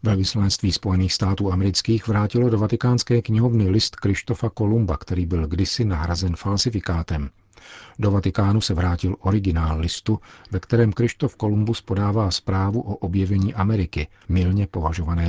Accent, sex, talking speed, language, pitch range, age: native, male, 135 wpm, Czech, 90-105 Hz, 50-69